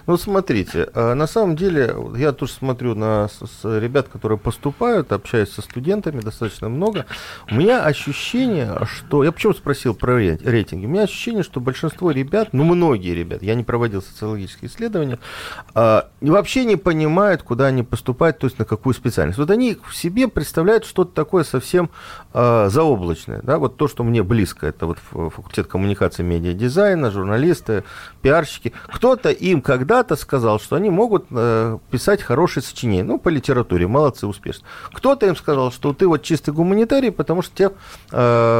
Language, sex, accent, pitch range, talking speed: Russian, male, native, 110-170 Hz, 155 wpm